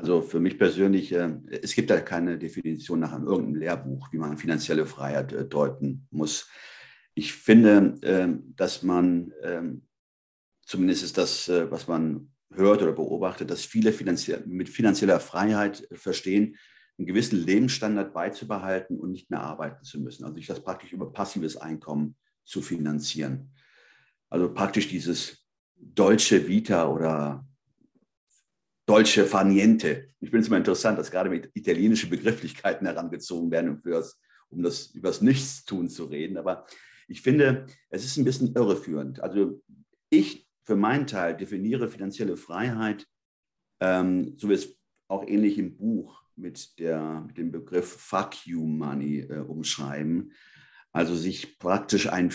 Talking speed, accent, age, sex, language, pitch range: 135 wpm, German, 50-69, male, German, 75-105 Hz